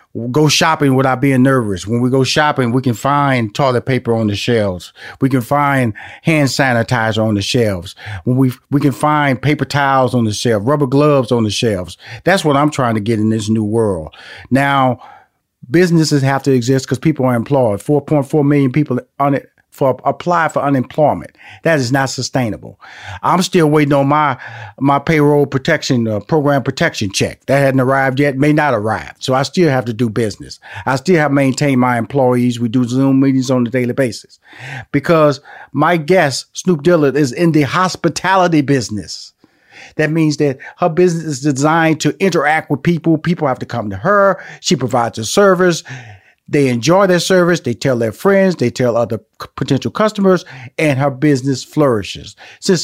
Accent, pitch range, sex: American, 125-165 Hz, male